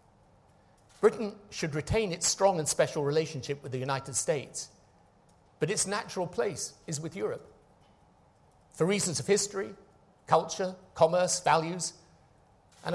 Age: 50-69